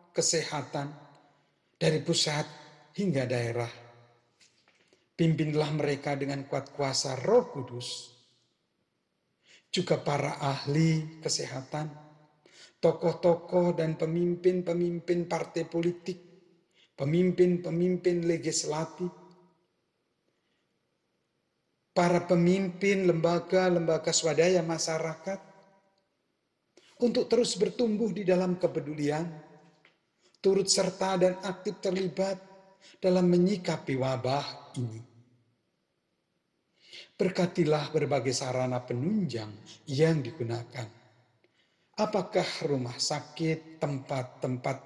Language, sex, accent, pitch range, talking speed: Indonesian, male, native, 140-180 Hz, 70 wpm